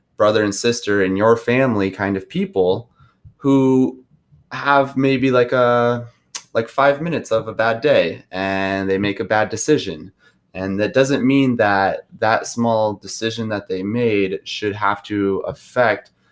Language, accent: English, American